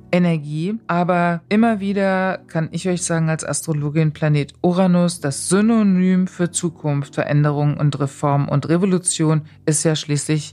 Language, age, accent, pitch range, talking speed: German, 40-59, German, 150-185 Hz, 135 wpm